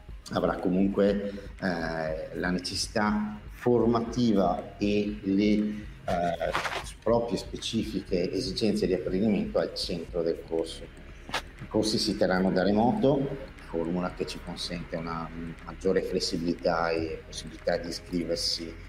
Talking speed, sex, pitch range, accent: 120 wpm, male, 85-105 Hz, native